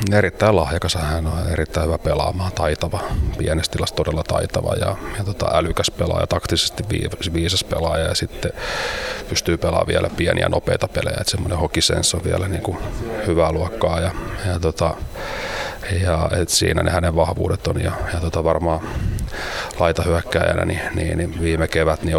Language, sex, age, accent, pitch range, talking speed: Finnish, male, 30-49, native, 80-95 Hz, 150 wpm